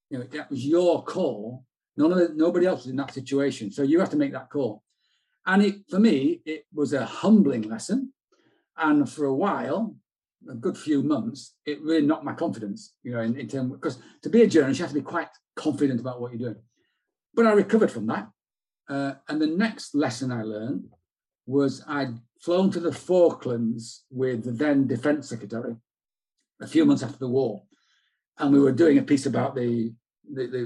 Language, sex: English, male